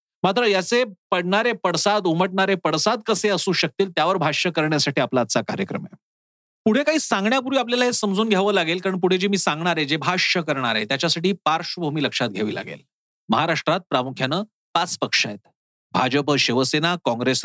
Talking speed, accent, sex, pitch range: 160 wpm, native, male, 155-215 Hz